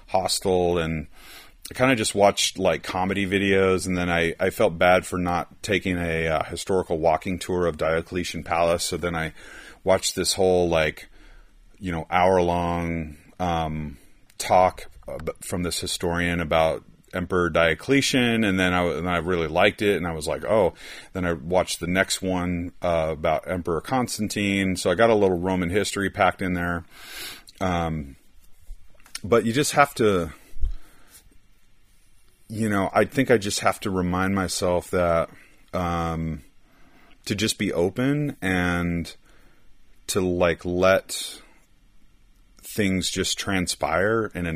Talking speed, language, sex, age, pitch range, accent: 150 wpm, English, male, 30-49, 85-100 Hz, American